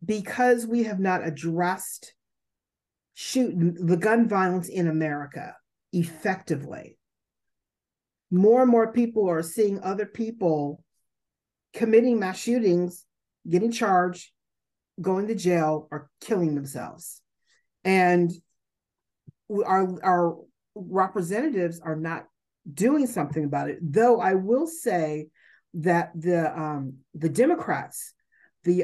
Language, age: English, 40-59